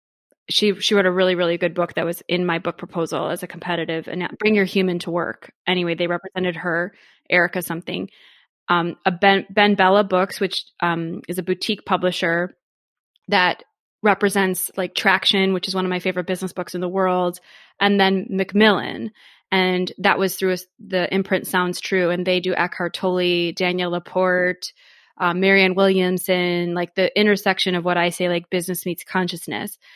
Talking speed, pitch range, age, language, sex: 180 wpm, 180-200 Hz, 20-39, English, female